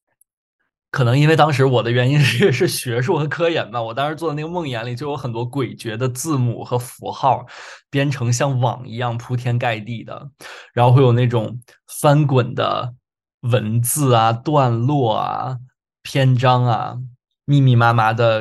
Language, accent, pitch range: Chinese, native, 120-135 Hz